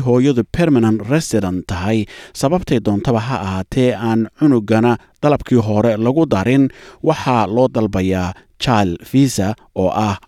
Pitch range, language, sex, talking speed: 100-130 Hz, English, male, 135 wpm